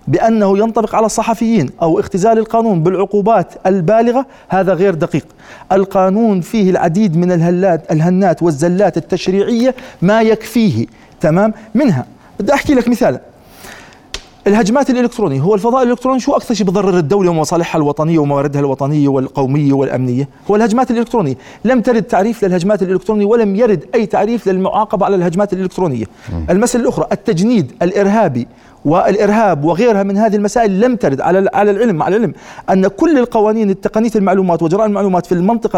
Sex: male